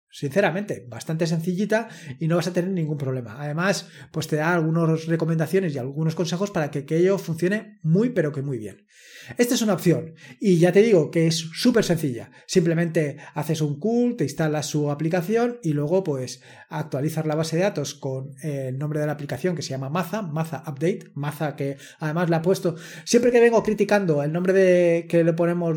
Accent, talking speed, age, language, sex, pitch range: Spanish, 200 wpm, 20-39, Spanish, male, 150-190 Hz